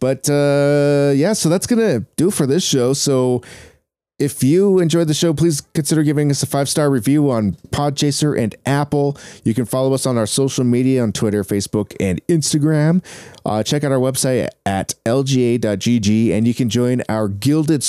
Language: English